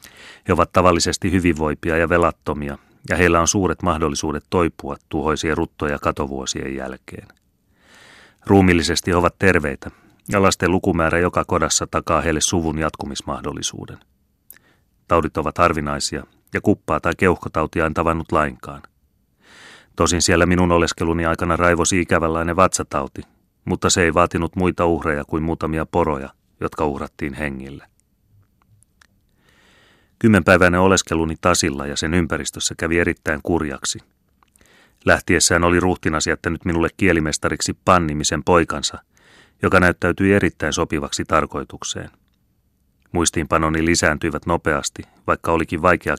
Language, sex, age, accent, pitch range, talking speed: Finnish, male, 30-49, native, 80-90 Hz, 115 wpm